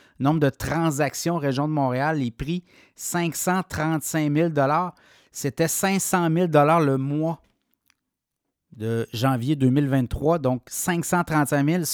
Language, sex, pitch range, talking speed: French, male, 140-170 Hz, 100 wpm